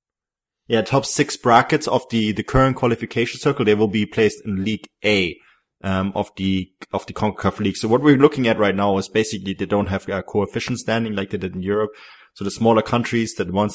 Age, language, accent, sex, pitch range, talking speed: 20-39, English, German, male, 95-115 Hz, 220 wpm